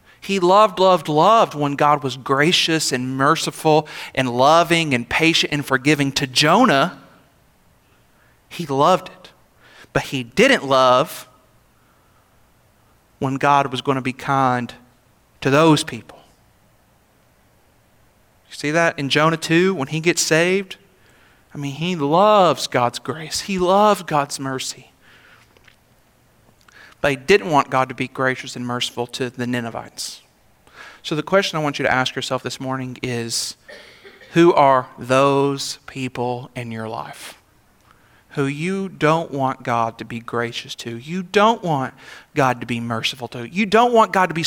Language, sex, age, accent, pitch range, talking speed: English, male, 40-59, American, 130-175 Hz, 145 wpm